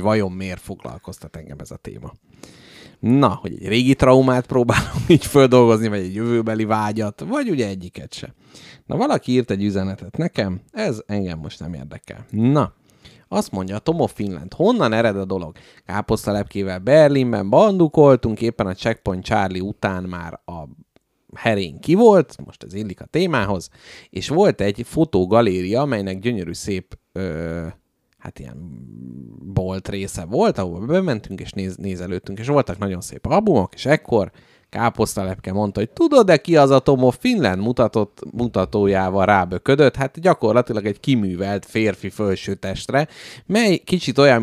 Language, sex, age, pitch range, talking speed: Hungarian, male, 30-49, 95-125 Hz, 145 wpm